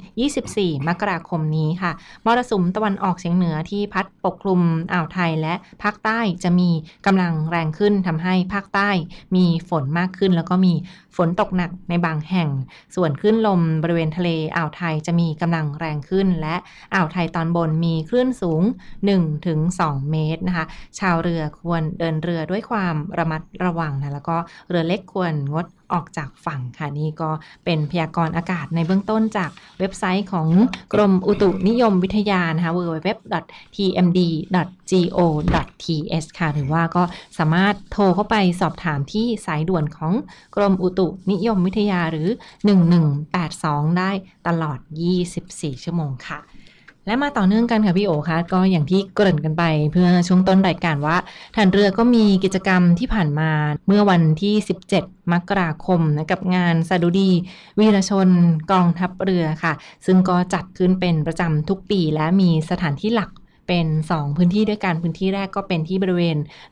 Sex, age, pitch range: female, 20-39, 165-195 Hz